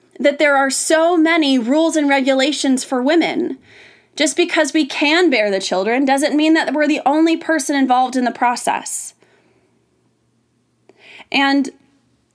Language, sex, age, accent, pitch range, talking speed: English, female, 20-39, American, 215-280 Hz, 140 wpm